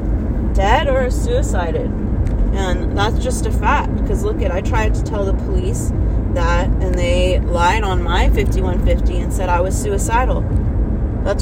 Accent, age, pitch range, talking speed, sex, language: American, 30-49, 80-105 Hz, 160 wpm, female, English